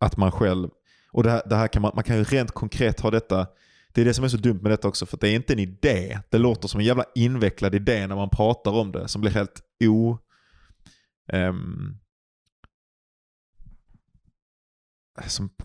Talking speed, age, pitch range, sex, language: 175 wpm, 20-39, 100-115 Hz, male, Swedish